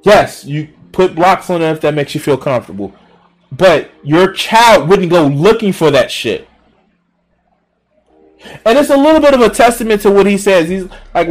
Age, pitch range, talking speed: 20-39, 140-235 Hz, 185 wpm